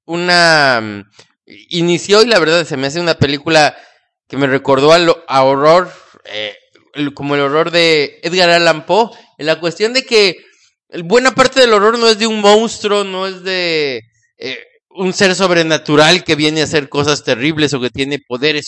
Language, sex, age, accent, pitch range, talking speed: English, male, 30-49, Mexican, 145-210 Hz, 185 wpm